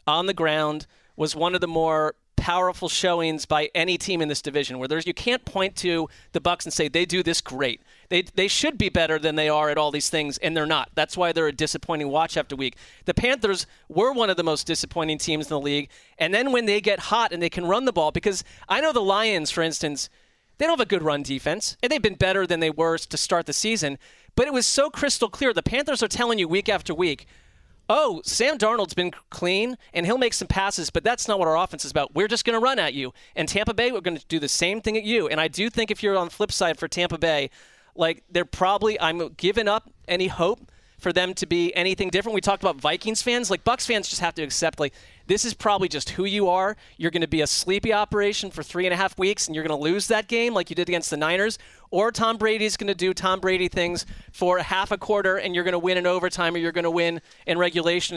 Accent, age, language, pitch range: American, 30-49, English, 160-205 Hz